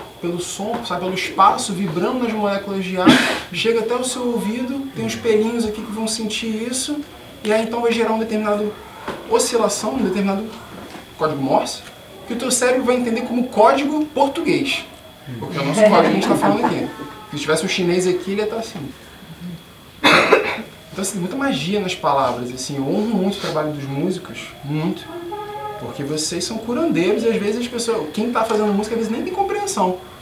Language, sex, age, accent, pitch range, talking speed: Portuguese, male, 20-39, Brazilian, 160-225 Hz, 195 wpm